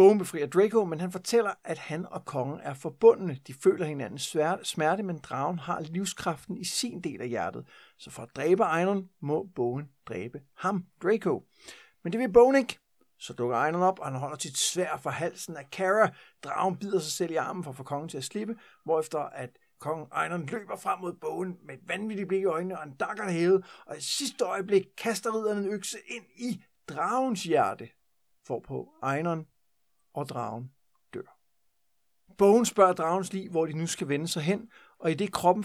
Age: 60-79